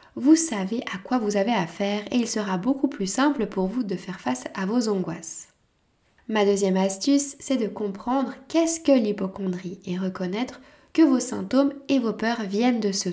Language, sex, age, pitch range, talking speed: French, female, 20-39, 200-265 Hz, 185 wpm